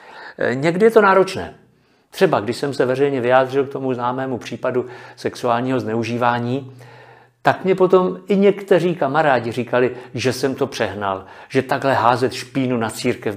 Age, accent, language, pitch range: 50-69, native, Czech, 120-145 Hz